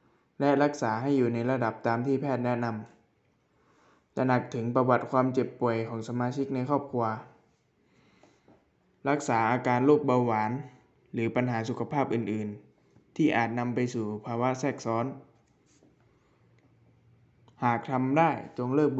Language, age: Thai, 20-39